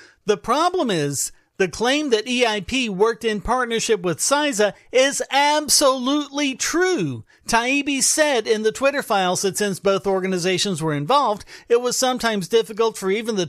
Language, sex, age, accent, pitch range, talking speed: English, male, 40-59, American, 185-245 Hz, 150 wpm